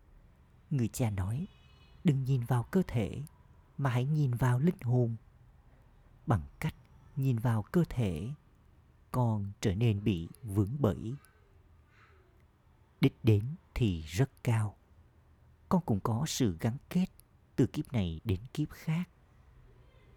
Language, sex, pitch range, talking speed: Vietnamese, male, 95-130 Hz, 130 wpm